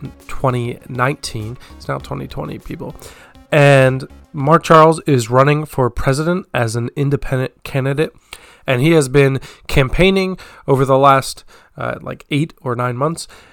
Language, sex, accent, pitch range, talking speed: English, male, American, 125-150 Hz, 135 wpm